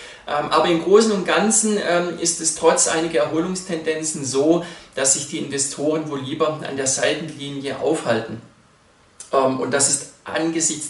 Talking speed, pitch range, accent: 140 wpm, 135-160 Hz, German